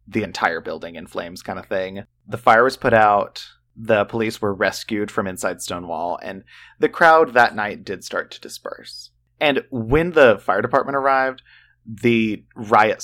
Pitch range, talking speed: 100-125 Hz, 170 wpm